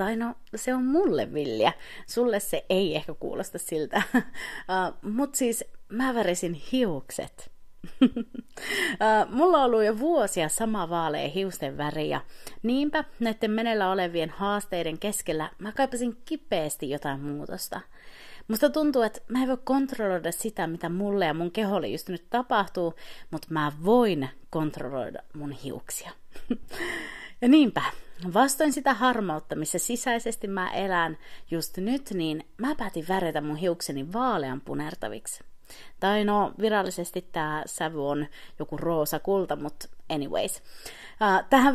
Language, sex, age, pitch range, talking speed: Finnish, female, 30-49, 165-245 Hz, 130 wpm